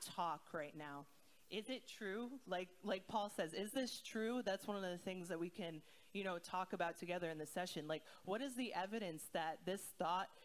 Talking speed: 210 wpm